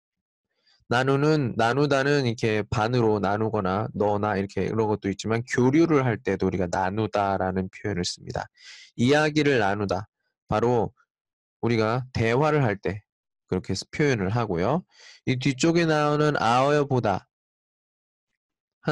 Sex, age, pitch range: male, 20-39, 100-140 Hz